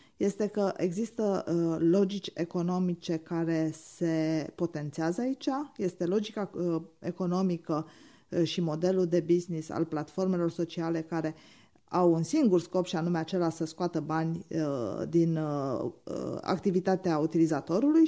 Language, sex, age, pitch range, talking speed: Romanian, female, 20-39, 165-200 Hz, 110 wpm